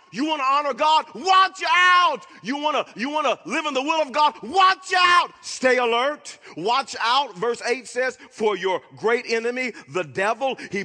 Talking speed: 195 wpm